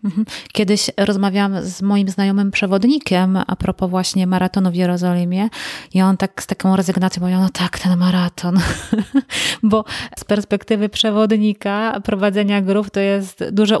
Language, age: Polish, 30-49